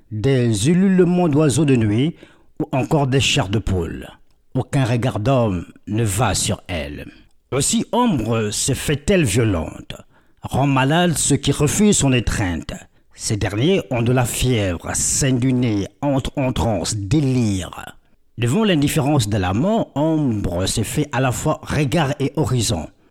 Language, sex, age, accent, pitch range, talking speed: French, male, 60-79, French, 110-140 Hz, 145 wpm